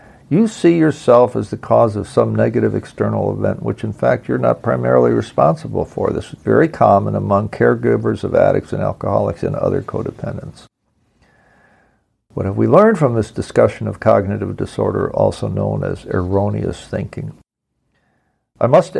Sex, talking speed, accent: male, 155 wpm, American